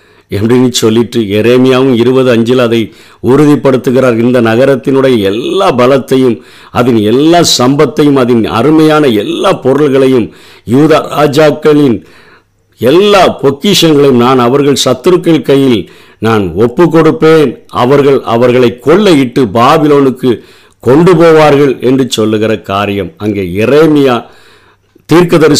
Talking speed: 95 wpm